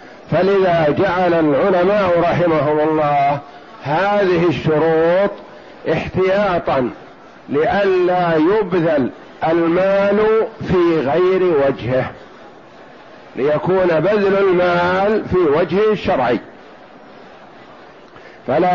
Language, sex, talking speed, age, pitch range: Arabic, male, 65 wpm, 50-69, 150-195 Hz